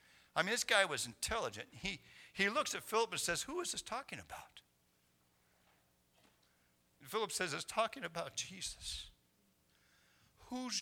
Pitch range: 105-155 Hz